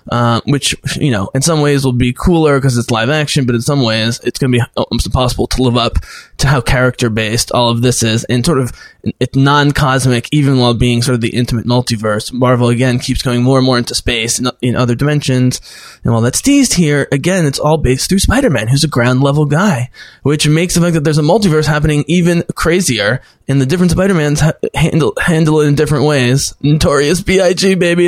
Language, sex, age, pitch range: English, male, 20-39, 120-155 Hz